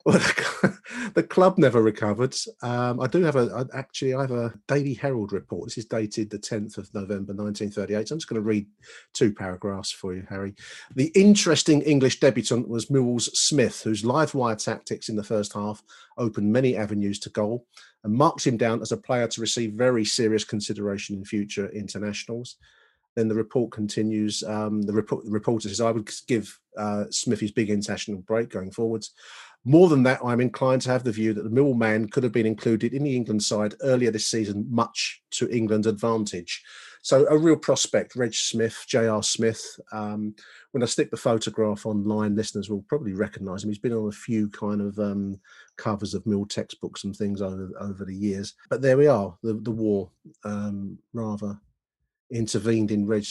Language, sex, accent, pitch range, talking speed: English, male, British, 105-120 Hz, 190 wpm